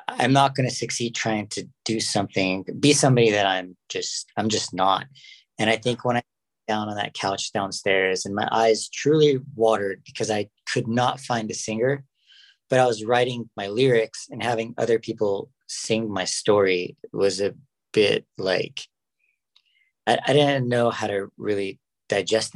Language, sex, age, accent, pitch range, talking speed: English, male, 40-59, American, 105-130 Hz, 175 wpm